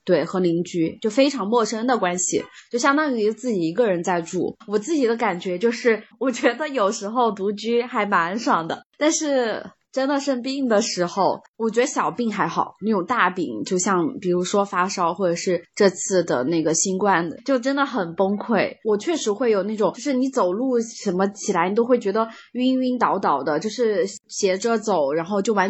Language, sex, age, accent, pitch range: Chinese, female, 20-39, native, 190-250 Hz